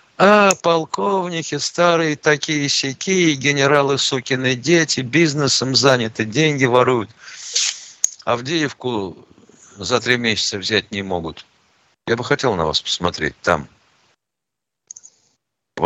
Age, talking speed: 60-79, 100 wpm